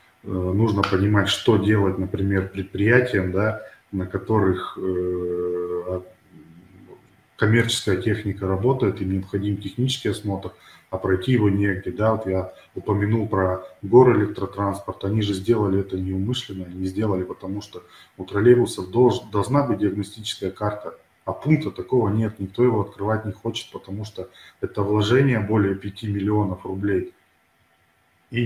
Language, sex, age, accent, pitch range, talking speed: Russian, male, 20-39, native, 95-115 Hz, 130 wpm